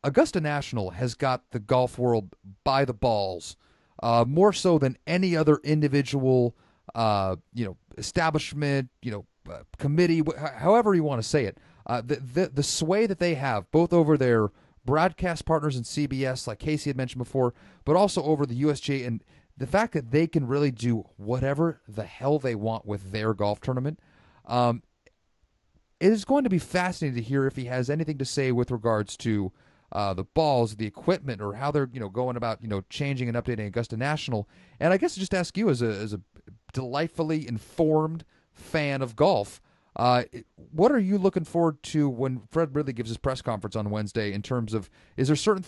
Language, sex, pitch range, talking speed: English, male, 115-160 Hz, 195 wpm